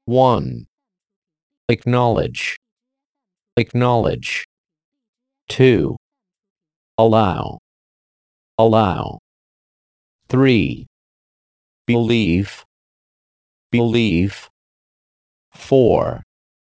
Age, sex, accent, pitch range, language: 50-69, male, American, 90-140 Hz, Chinese